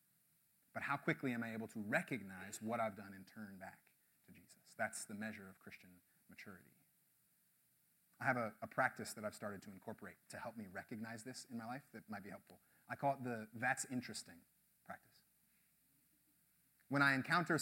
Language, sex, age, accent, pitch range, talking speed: English, male, 30-49, American, 115-150 Hz, 185 wpm